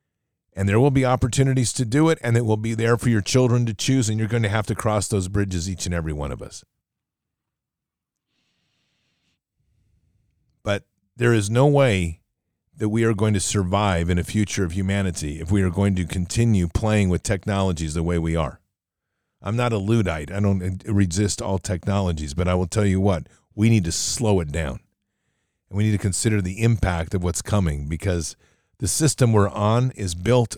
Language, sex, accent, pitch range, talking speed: English, male, American, 90-115 Hz, 195 wpm